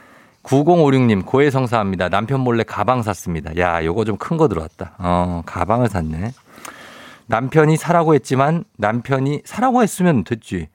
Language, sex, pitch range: Korean, male, 105-150 Hz